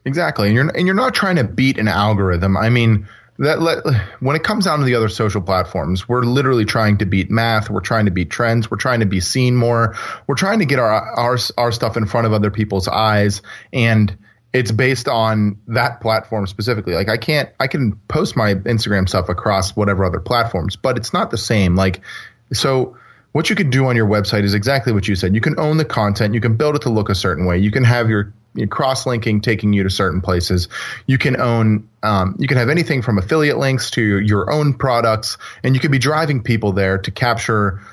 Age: 30-49